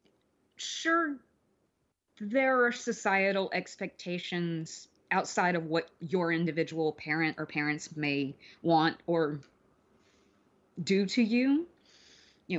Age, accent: 30-49, American